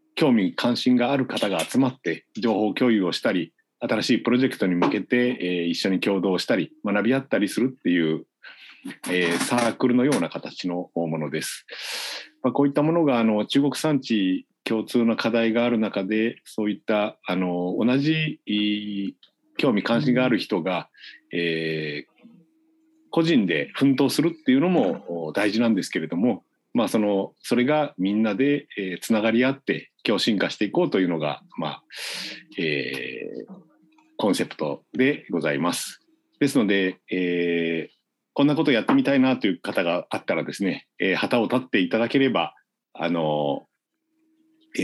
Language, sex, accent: Japanese, male, native